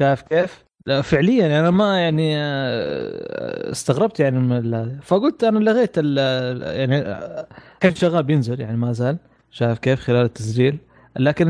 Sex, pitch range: male, 125-160 Hz